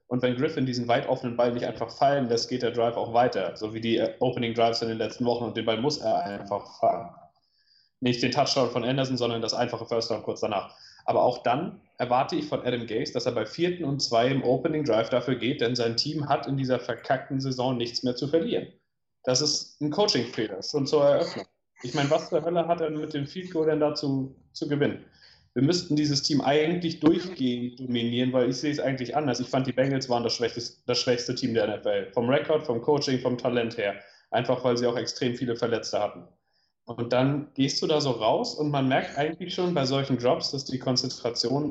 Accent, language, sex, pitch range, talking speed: German, German, male, 120-150 Hz, 220 wpm